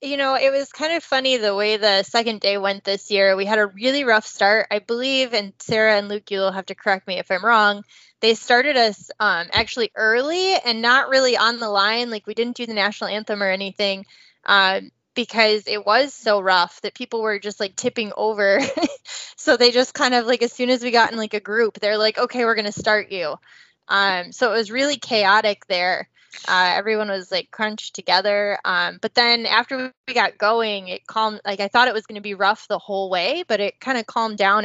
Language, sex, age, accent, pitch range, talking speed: English, female, 10-29, American, 195-235 Hz, 230 wpm